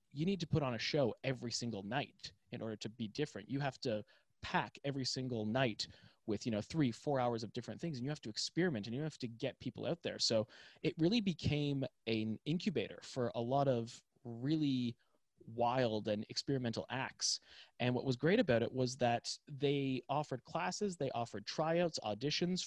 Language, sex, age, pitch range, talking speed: English, male, 20-39, 110-140 Hz, 195 wpm